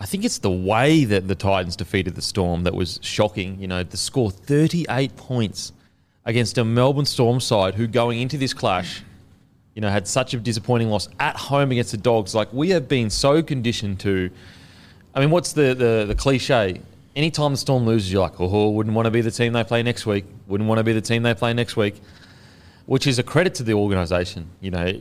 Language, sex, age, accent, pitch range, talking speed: English, male, 30-49, Australian, 95-125 Hz, 220 wpm